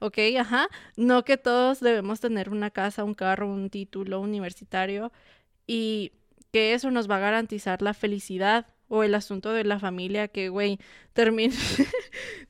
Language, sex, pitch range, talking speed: Spanish, female, 205-230 Hz, 155 wpm